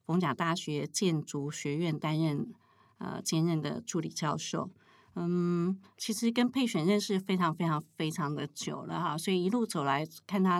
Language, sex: Chinese, female